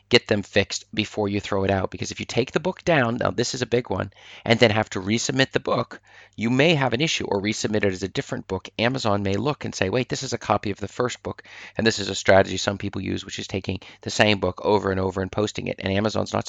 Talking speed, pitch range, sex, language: 280 wpm, 95-115 Hz, male, English